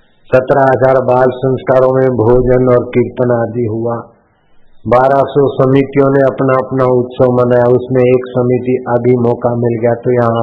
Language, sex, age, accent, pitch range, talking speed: Hindi, male, 50-69, native, 115-140 Hz, 155 wpm